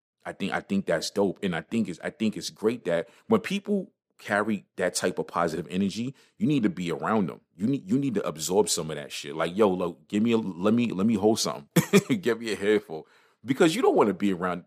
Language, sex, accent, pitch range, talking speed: English, male, American, 85-125 Hz, 255 wpm